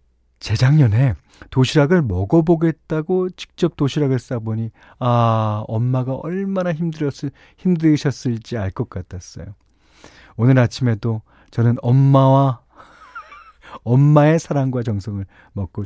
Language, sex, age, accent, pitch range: Korean, male, 40-59, native, 110-175 Hz